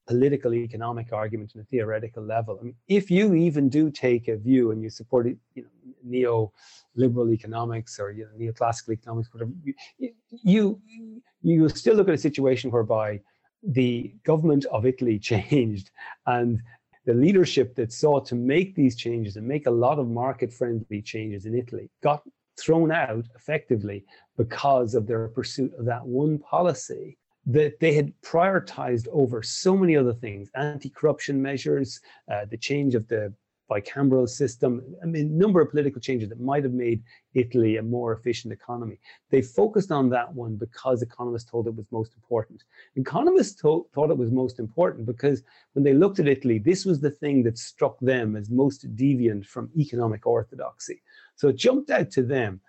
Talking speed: 170 wpm